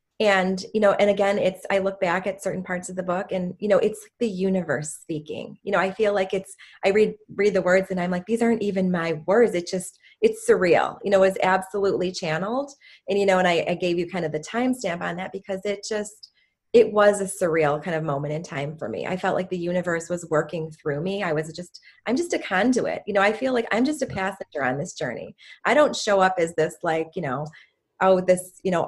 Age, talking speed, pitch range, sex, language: 30-49, 250 wpm, 175-205 Hz, female, English